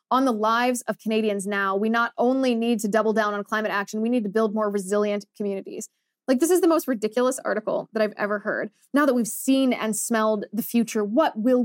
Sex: female